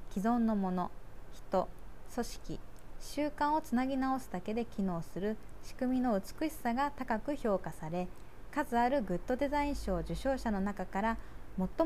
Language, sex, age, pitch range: Japanese, female, 20-39, 175-255 Hz